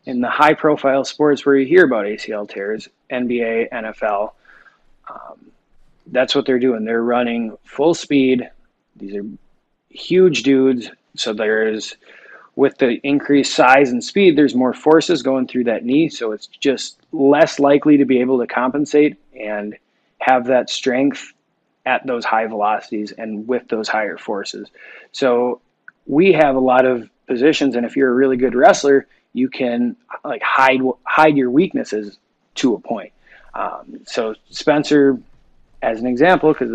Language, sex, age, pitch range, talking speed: English, male, 20-39, 120-140 Hz, 155 wpm